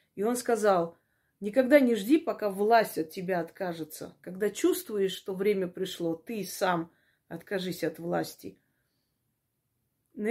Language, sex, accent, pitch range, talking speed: Russian, female, native, 190-245 Hz, 130 wpm